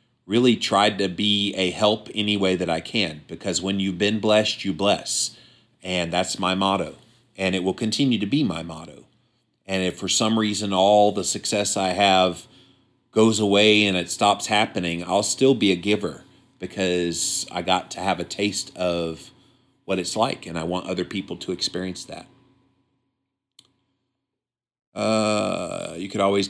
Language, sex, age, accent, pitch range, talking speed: English, male, 40-59, American, 90-115 Hz, 170 wpm